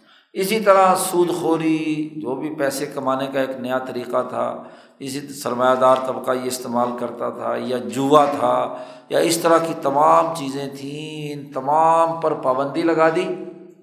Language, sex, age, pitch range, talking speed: Urdu, male, 50-69, 140-175 Hz, 160 wpm